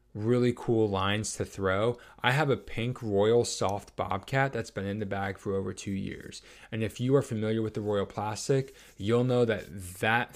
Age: 20-39